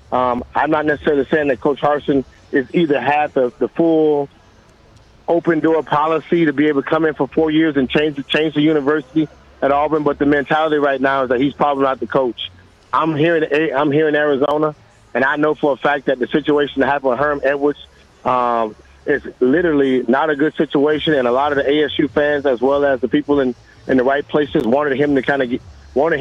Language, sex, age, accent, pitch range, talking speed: English, male, 30-49, American, 130-155 Hz, 220 wpm